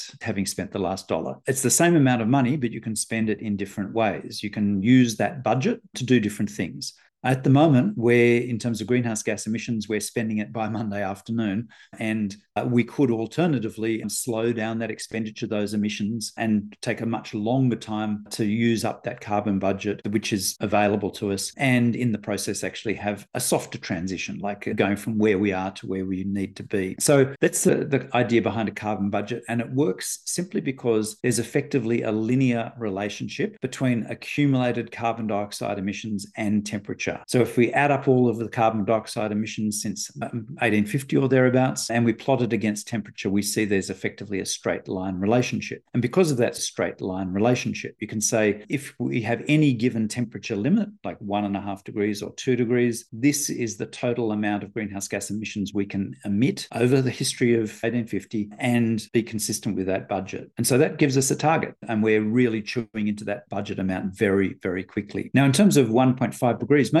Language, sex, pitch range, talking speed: English, male, 105-125 Hz, 195 wpm